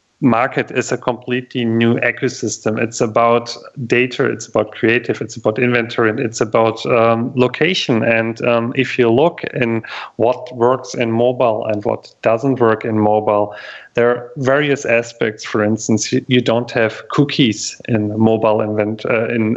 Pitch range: 110-125 Hz